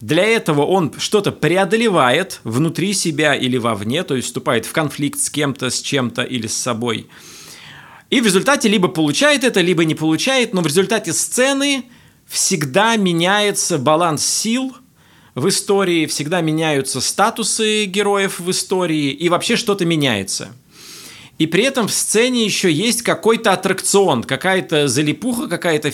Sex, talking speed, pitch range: male, 145 wpm, 145-200 Hz